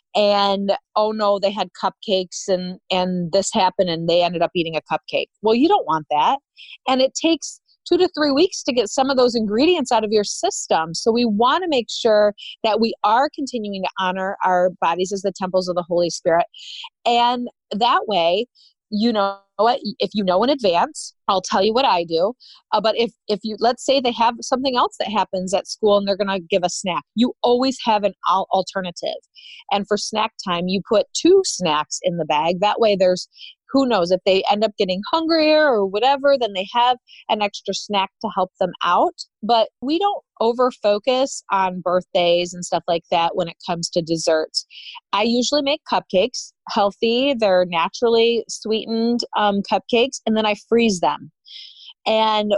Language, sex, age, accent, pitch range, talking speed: English, female, 30-49, American, 185-245 Hz, 195 wpm